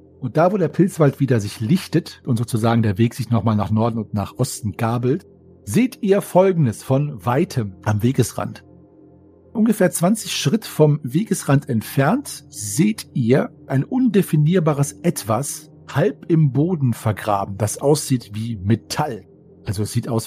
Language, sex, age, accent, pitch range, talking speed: German, male, 40-59, German, 115-150 Hz, 150 wpm